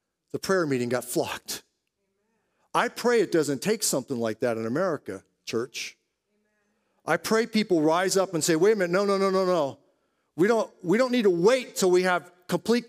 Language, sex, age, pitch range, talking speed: English, male, 40-59, 195-265 Hz, 195 wpm